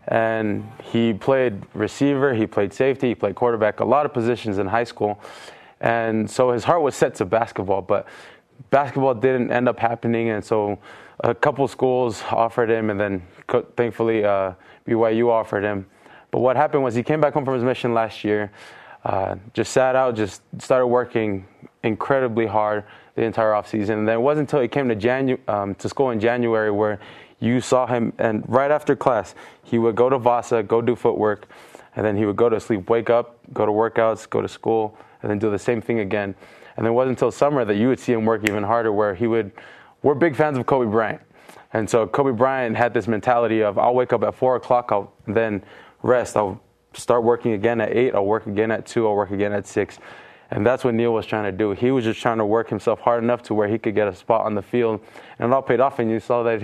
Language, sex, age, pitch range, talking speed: English, male, 20-39, 105-125 Hz, 225 wpm